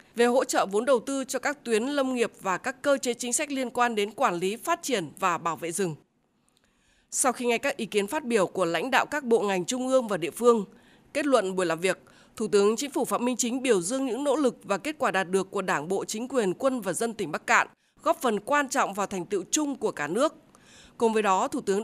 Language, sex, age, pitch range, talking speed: Vietnamese, female, 20-39, 200-265 Hz, 265 wpm